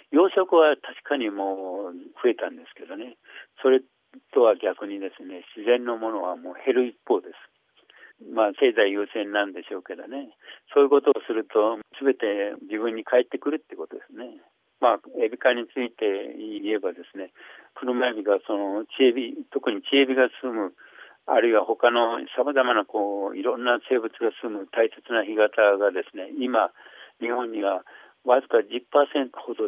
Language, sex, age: Japanese, male, 60-79